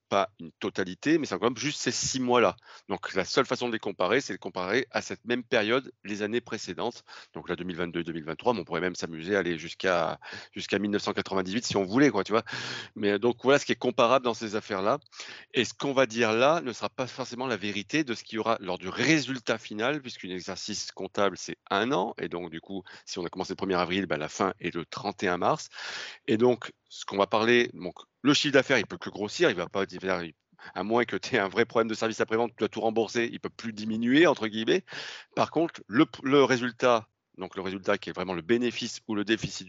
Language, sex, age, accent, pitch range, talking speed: French, male, 40-59, French, 95-130 Hz, 230 wpm